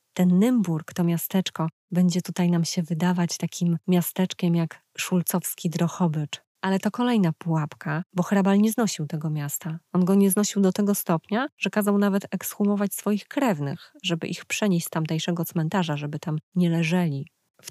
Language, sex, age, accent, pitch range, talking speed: Polish, female, 20-39, native, 165-190 Hz, 165 wpm